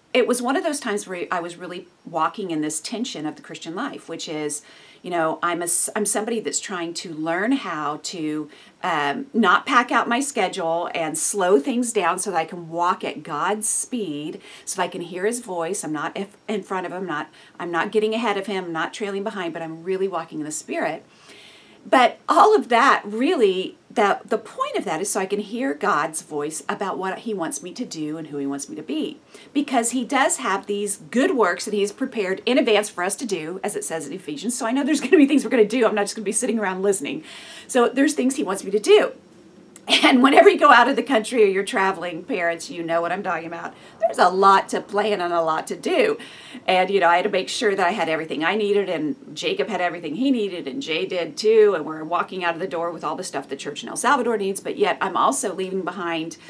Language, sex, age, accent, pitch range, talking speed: English, female, 40-59, American, 170-235 Hz, 255 wpm